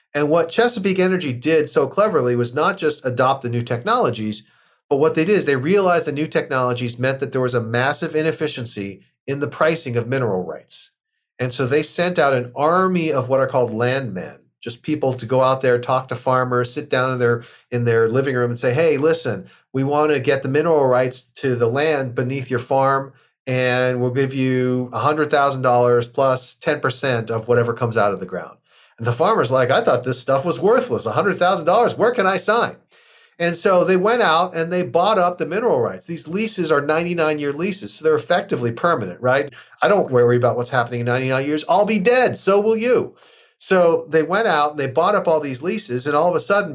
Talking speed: 215 wpm